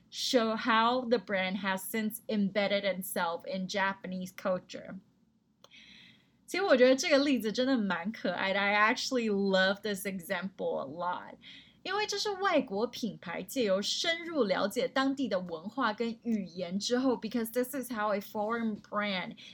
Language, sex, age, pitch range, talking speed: English, female, 20-39, 200-255 Hz, 75 wpm